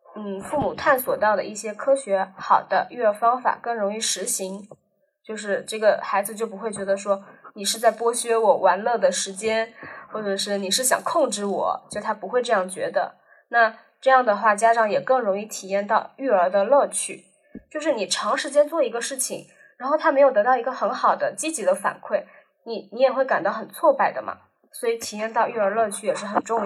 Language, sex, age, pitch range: Chinese, female, 10-29, 210-275 Hz